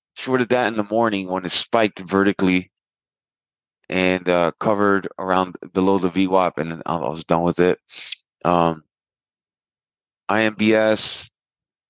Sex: male